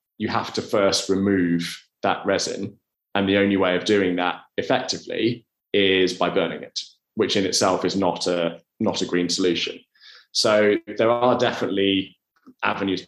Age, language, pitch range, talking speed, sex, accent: 20-39, English, 90-110 Hz, 150 wpm, male, British